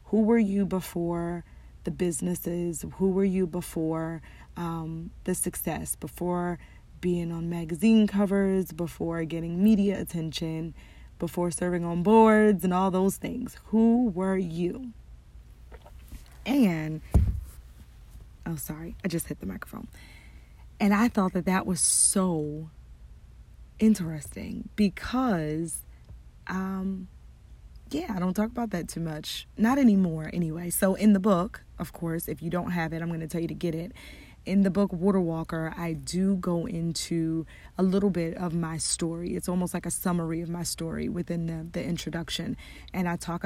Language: English